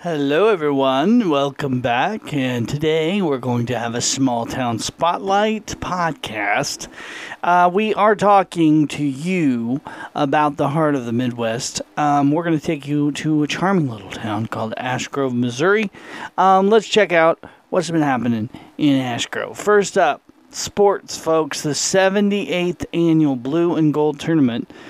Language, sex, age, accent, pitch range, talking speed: English, male, 40-59, American, 135-175 Hz, 150 wpm